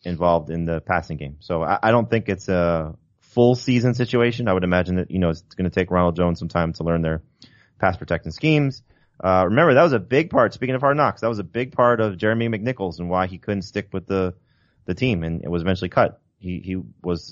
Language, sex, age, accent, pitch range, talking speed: English, male, 30-49, American, 85-105 Hz, 245 wpm